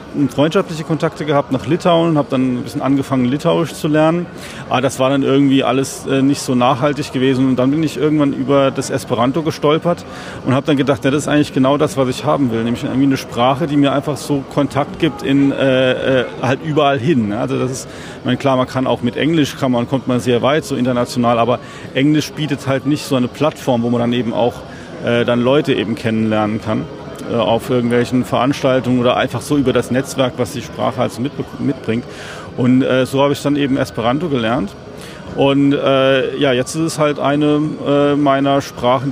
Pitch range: 125-145 Hz